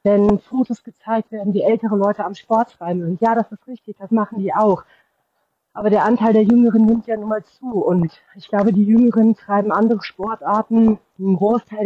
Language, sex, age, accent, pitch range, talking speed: German, female, 30-49, German, 190-225 Hz, 195 wpm